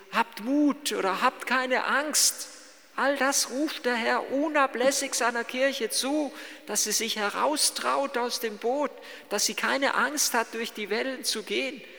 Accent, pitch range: German, 220-285 Hz